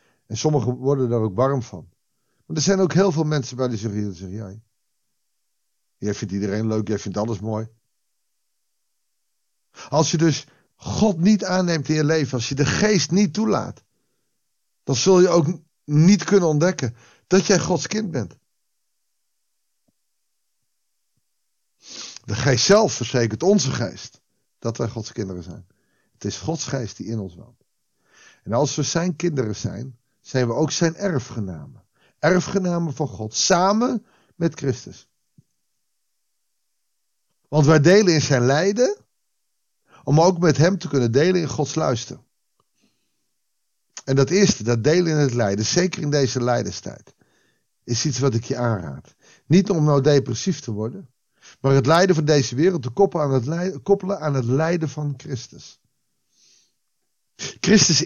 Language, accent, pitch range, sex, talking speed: Dutch, Dutch, 120-175 Hz, male, 145 wpm